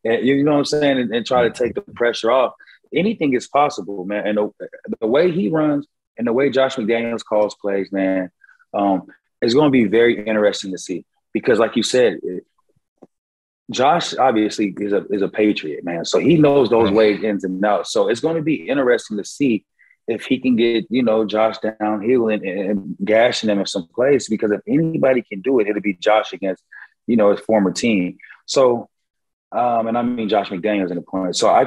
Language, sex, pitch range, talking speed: English, male, 105-140 Hz, 215 wpm